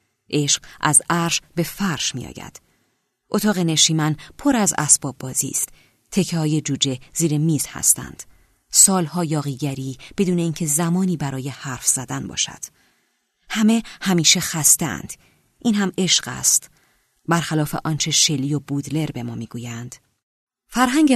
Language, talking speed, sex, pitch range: Persian, 125 wpm, female, 135-190 Hz